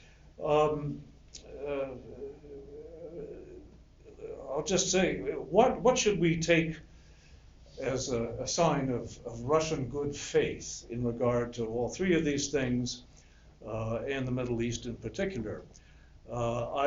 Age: 60-79